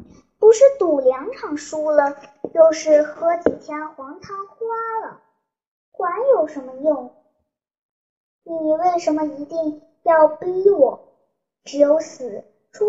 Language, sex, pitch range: Chinese, male, 270-365 Hz